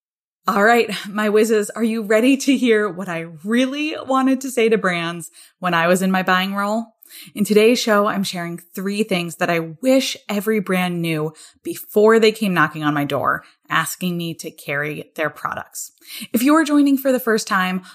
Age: 20-39